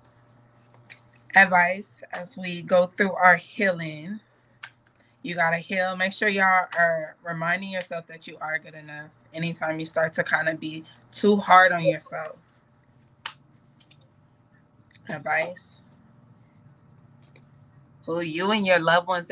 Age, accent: 20-39, American